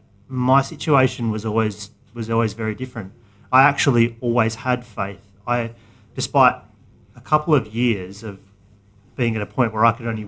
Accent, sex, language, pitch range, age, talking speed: Australian, male, English, 105-125 Hz, 30-49, 165 wpm